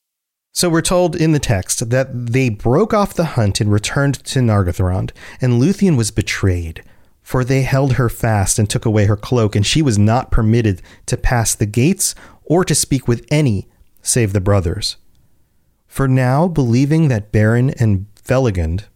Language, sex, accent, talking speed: English, male, American, 170 wpm